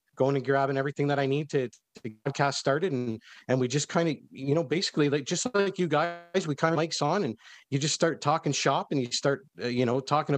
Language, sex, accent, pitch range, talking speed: English, male, American, 115-145 Hz, 250 wpm